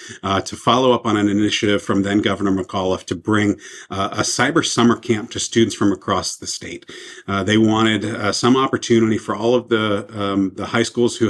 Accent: American